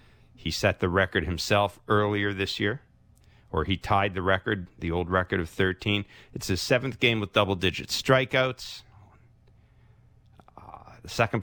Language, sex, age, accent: English, male, 50-69, American